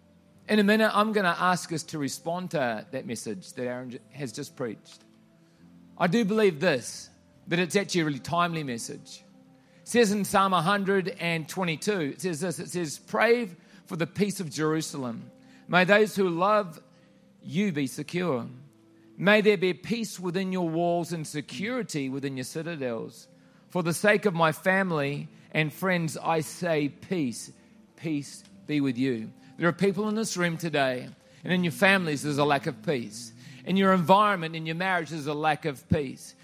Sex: male